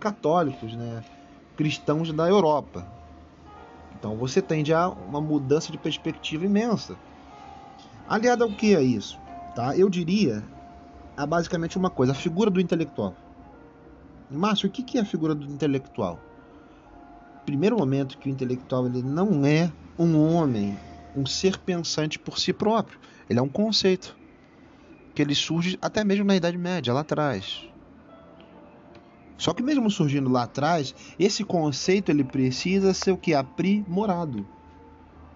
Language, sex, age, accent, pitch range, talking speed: Portuguese, male, 40-59, Brazilian, 115-180 Hz, 135 wpm